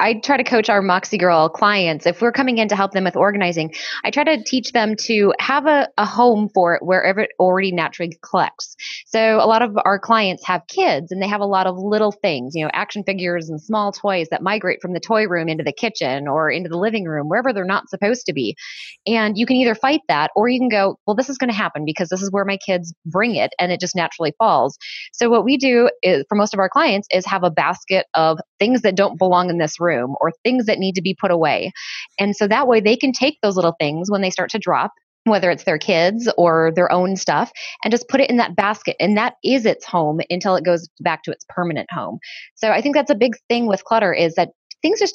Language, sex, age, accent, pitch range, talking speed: English, female, 20-39, American, 175-230 Hz, 255 wpm